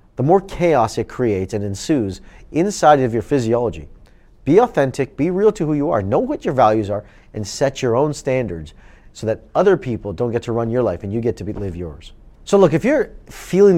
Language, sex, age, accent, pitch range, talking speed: English, male, 40-59, American, 100-145 Hz, 220 wpm